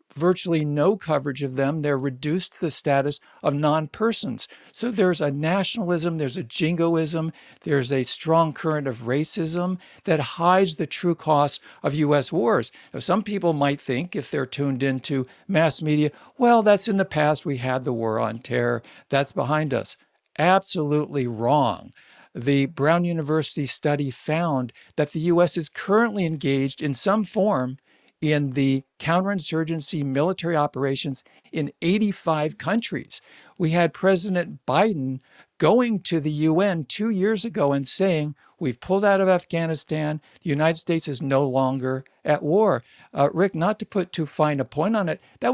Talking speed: 160 wpm